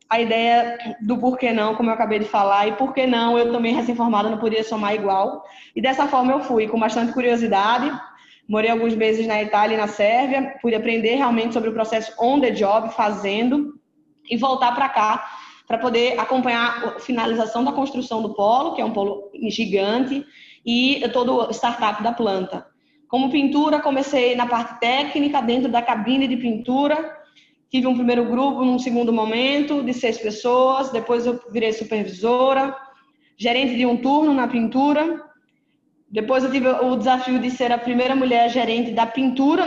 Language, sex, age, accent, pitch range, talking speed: Portuguese, female, 20-39, Brazilian, 225-265 Hz, 170 wpm